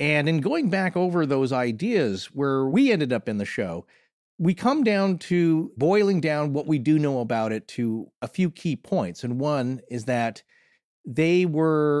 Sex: male